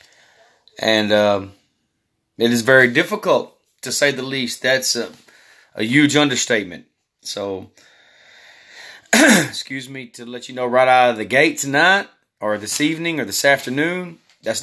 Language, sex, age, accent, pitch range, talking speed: English, male, 30-49, American, 105-130 Hz, 145 wpm